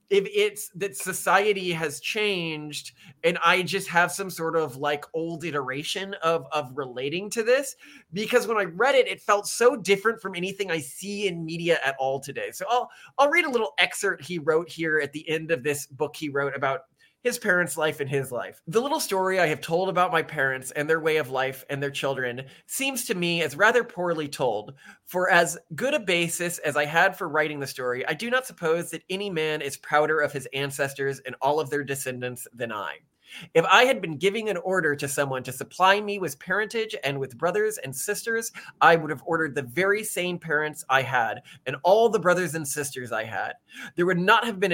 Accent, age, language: American, 20-39, English